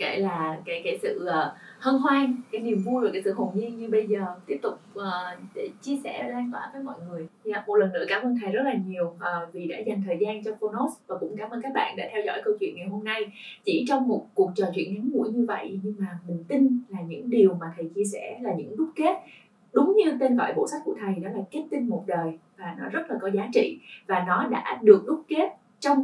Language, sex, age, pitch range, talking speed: Vietnamese, female, 20-39, 195-260 Hz, 260 wpm